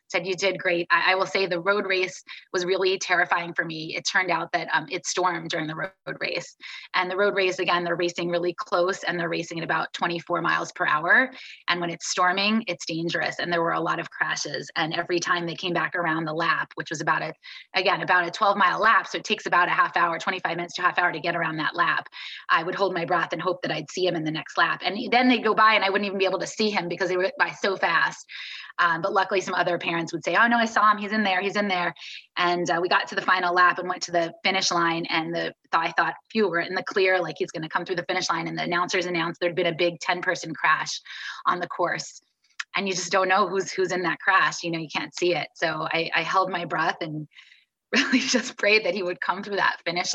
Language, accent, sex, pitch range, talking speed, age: English, American, female, 170-195 Hz, 270 wpm, 20-39